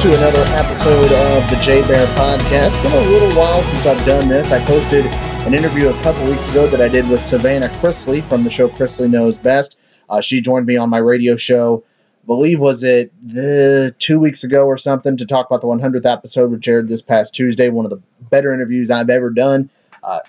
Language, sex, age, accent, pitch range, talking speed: English, male, 30-49, American, 120-140 Hz, 220 wpm